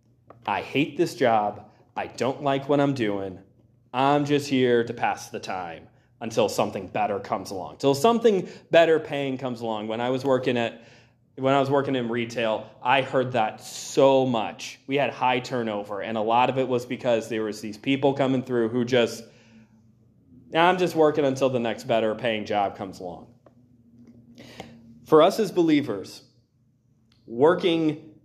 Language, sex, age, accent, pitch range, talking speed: English, male, 30-49, American, 115-140 Hz, 170 wpm